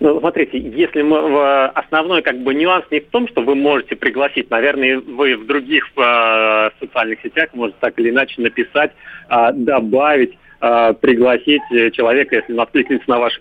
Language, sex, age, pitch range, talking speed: Russian, male, 30-49, 115-155 Hz, 150 wpm